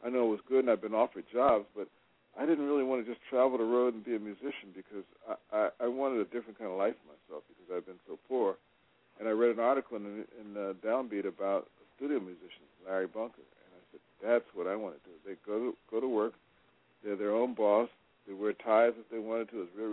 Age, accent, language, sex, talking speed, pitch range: 60-79, American, English, male, 255 wpm, 100-120 Hz